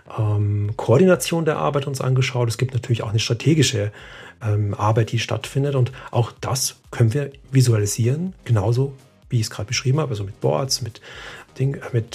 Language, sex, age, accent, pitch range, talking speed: German, male, 40-59, German, 110-130 Hz, 165 wpm